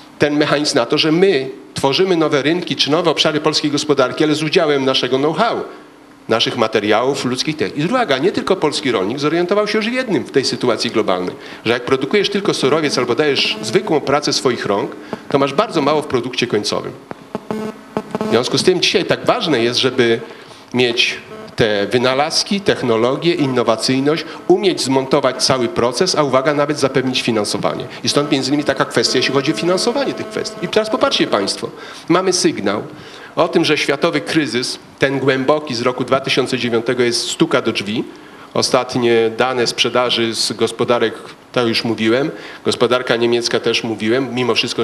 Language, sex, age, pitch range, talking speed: Polish, male, 40-59, 120-165 Hz, 165 wpm